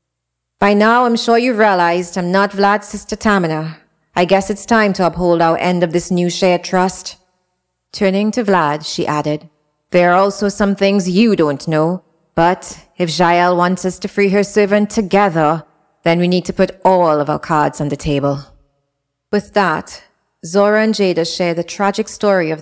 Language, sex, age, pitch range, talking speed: English, female, 30-49, 170-205 Hz, 185 wpm